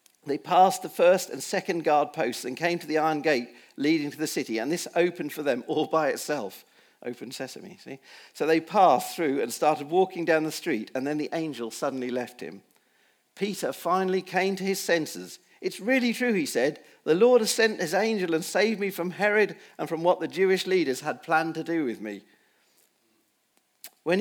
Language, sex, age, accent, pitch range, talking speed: English, male, 50-69, British, 150-195 Hz, 200 wpm